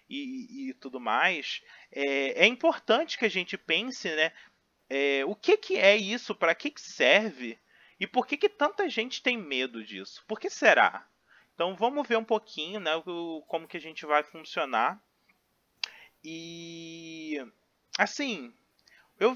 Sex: male